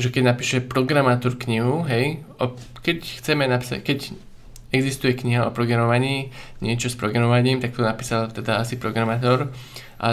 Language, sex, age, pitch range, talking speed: Slovak, male, 20-39, 120-130 Hz, 150 wpm